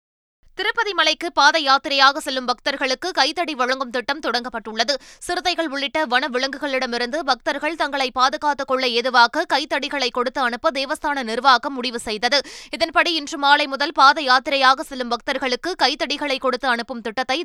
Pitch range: 255-305 Hz